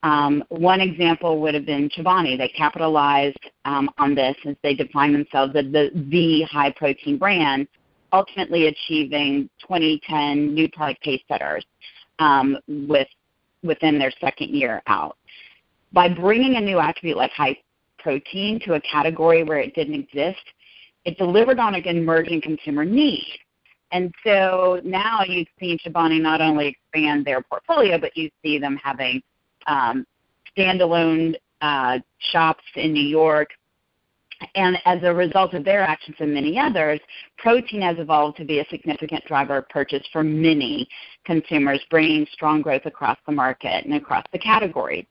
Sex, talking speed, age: female, 155 wpm, 40-59